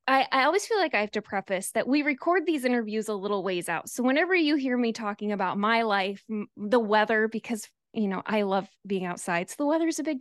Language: English